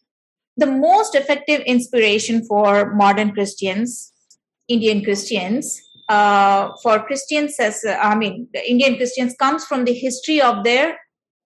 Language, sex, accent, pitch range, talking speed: English, female, Indian, 220-285 Hz, 130 wpm